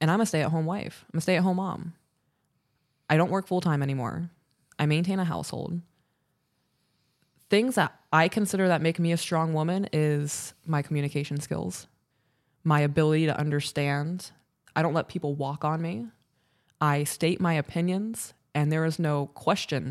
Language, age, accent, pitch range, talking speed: English, 20-39, American, 145-170 Hz, 155 wpm